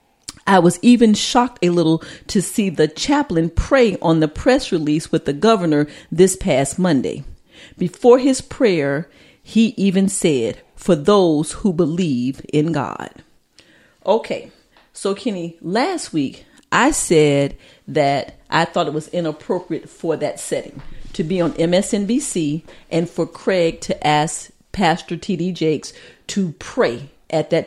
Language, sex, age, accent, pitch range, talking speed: English, female, 40-59, American, 160-200 Hz, 140 wpm